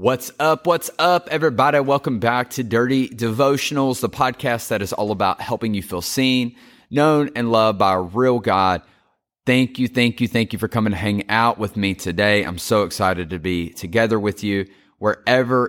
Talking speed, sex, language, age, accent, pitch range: 190 wpm, male, English, 30-49, American, 95-125 Hz